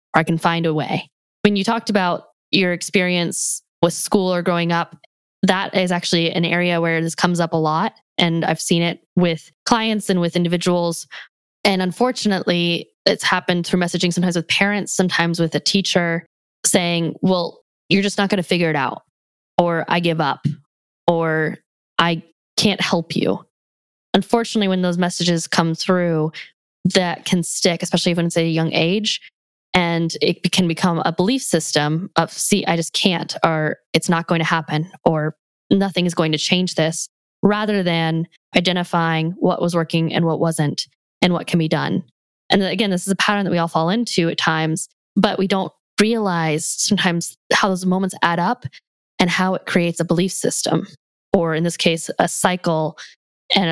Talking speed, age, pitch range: 180 wpm, 10-29, 165-190 Hz